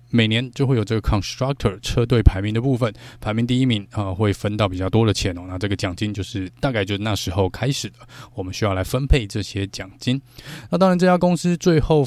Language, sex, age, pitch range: Chinese, male, 20-39, 100-130 Hz